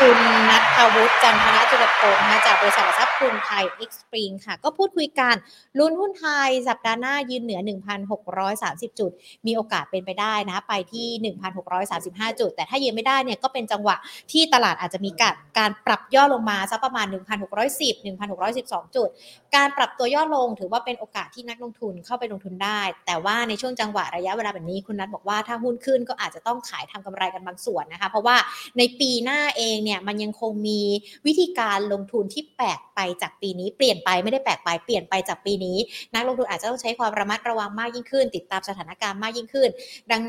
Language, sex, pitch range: Thai, female, 200-255 Hz